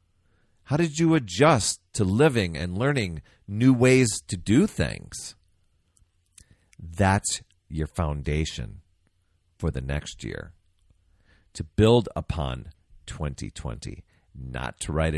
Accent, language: American, English